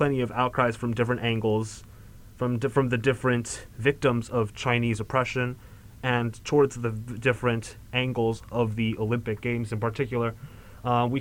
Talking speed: 140 wpm